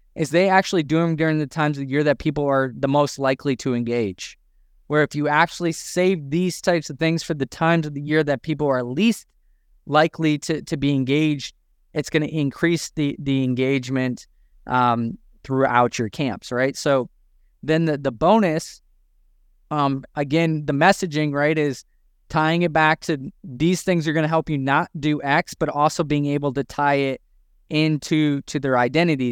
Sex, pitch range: male, 135-170 Hz